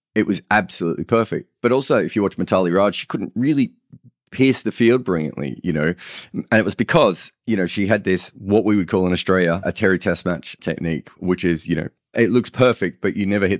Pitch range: 85-110 Hz